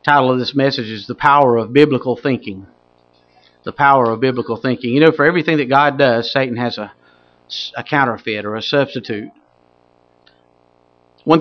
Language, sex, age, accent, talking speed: English, male, 50-69, American, 165 wpm